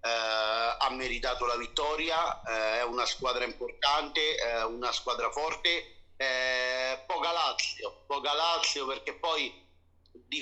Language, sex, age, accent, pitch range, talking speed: Italian, male, 50-69, native, 125-145 Hz, 125 wpm